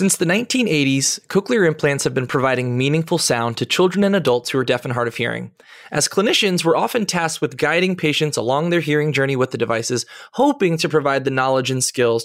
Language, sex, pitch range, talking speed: English, male, 125-170 Hz, 210 wpm